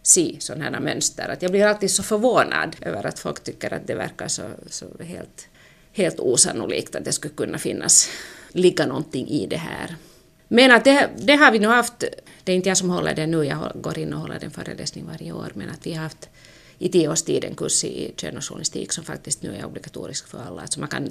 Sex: female